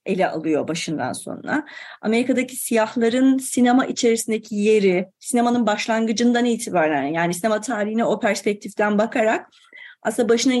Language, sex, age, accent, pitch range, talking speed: Turkish, female, 30-49, native, 205-265 Hz, 115 wpm